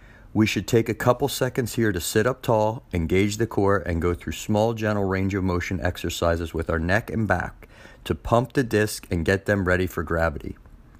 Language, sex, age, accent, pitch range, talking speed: English, male, 30-49, American, 85-110 Hz, 205 wpm